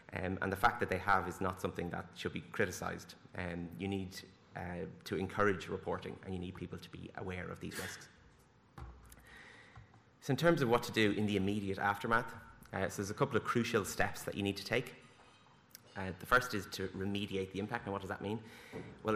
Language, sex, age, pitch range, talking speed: English, male, 30-49, 90-105 Hz, 215 wpm